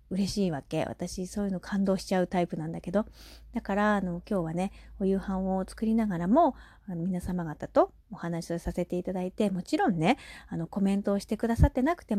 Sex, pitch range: female, 175-230 Hz